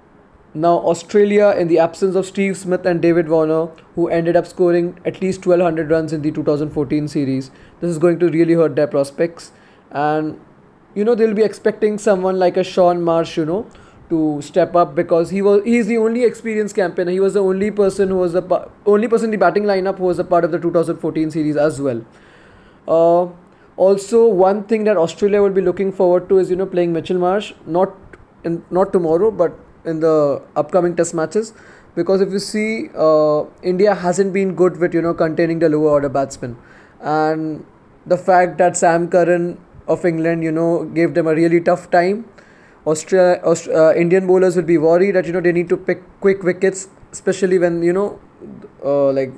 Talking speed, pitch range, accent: 195 wpm, 160-190 Hz, Indian